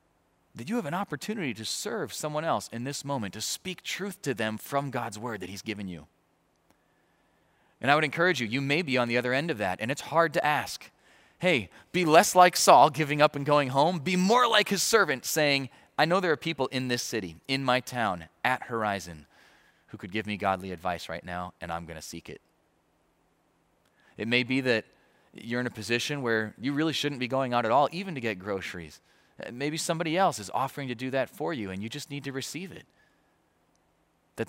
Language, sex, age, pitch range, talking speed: English, male, 30-49, 100-140 Hz, 215 wpm